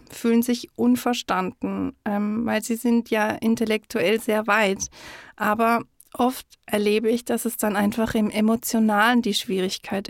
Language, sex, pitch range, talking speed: German, female, 200-230 Hz, 130 wpm